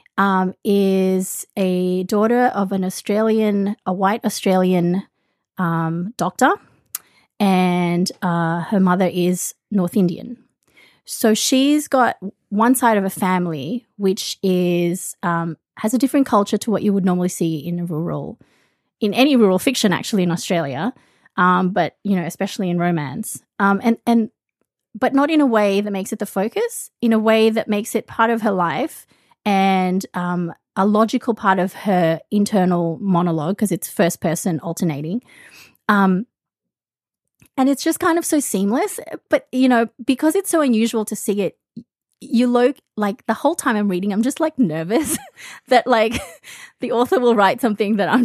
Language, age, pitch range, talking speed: English, 30-49, 185-235 Hz, 165 wpm